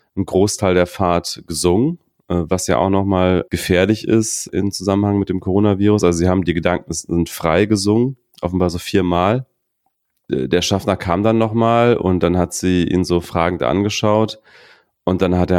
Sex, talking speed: male, 175 wpm